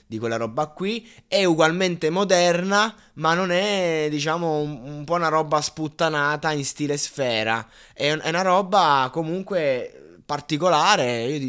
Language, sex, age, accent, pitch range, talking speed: Italian, male, 20-39, native, 115-155 Hz, 140 wpm